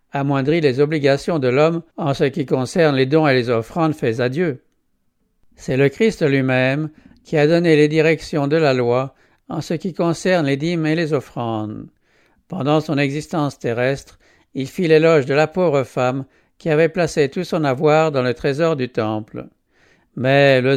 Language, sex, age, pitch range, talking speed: English, male, 60-79, 130-160 Hz, 180 wpm